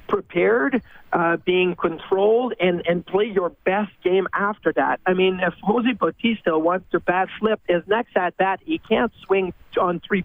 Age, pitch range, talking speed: 40-59, 175-210 Hz, 175 wpm